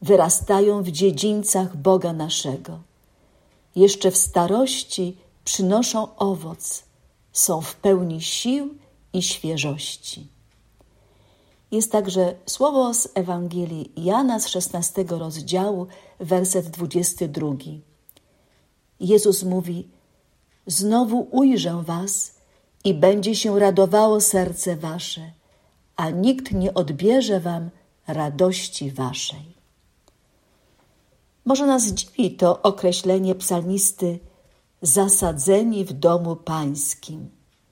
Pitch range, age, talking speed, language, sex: 165-205 Hz, 50-69, 85 wpm, Polish, female